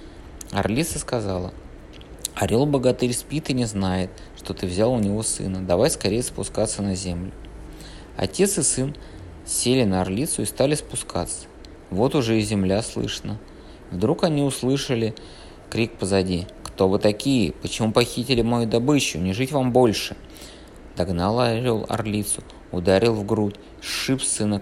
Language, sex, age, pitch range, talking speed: Russian, male, 20-39, 95-125 Hz, 135 wpm